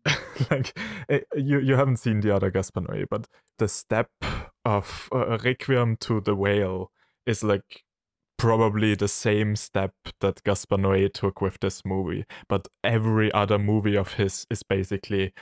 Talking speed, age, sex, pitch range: 150 wpm, 20-39, male, 95-115 Hz